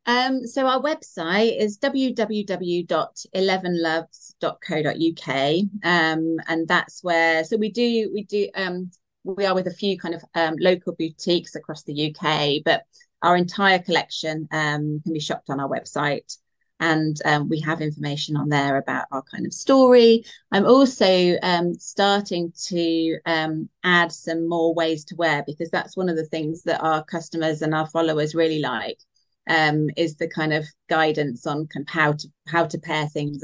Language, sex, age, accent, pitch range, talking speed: English, female, 30-49, British, 155-180 Hz, 170 wpm